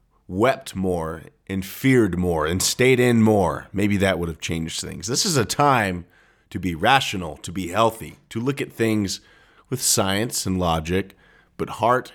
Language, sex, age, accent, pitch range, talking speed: English, male, 40-59, American, 90-125 Hz, 175 wpm